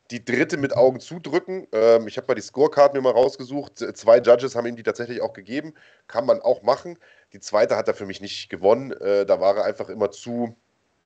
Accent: German